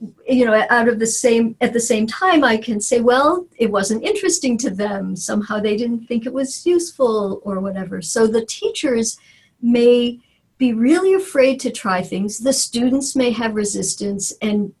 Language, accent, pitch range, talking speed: English, American, 205-250 Hz, 180 wpm